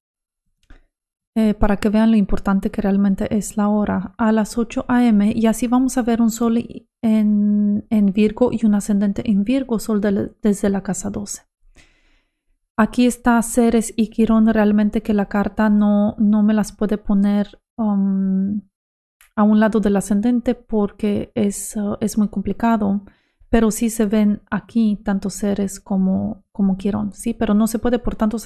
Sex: female